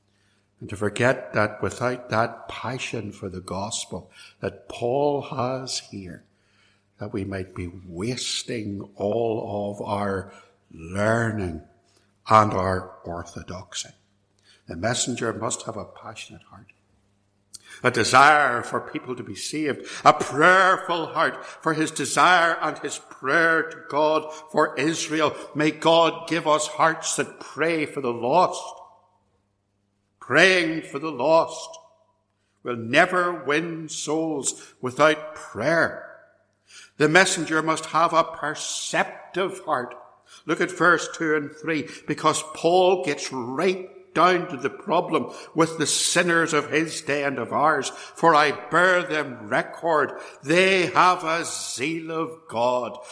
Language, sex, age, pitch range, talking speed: English, male, 60-79, 100-160 Hz, 130 wpm